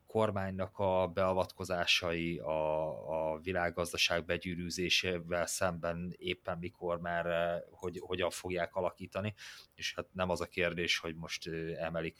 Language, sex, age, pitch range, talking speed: Hungarian, male, 30-49, 85-90 Hz, 120 wpm